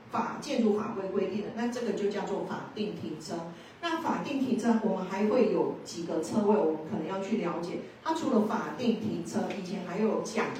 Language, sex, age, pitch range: Chinese, female, 40-59, 195-235 Hz